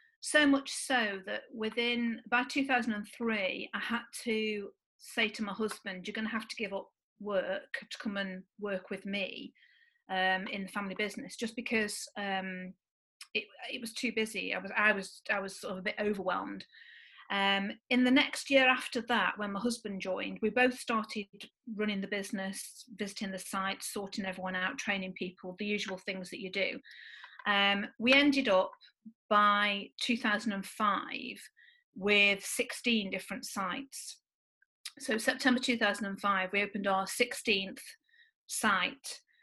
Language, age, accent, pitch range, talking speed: English, 40-59, British, 200-250 Hz, 155 wpm